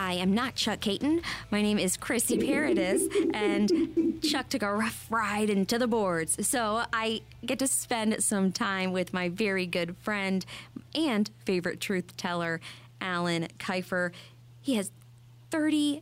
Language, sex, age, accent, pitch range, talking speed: English, female, 20-39, American, 170-230 Hz, 150 wpm